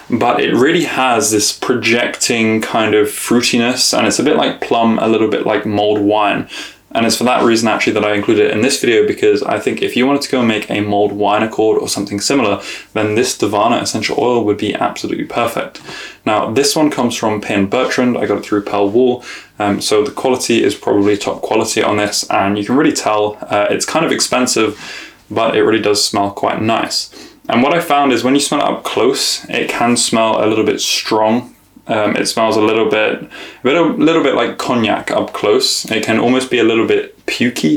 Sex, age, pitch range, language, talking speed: male, 20-39, 105-120 Hz, English, 220 wpm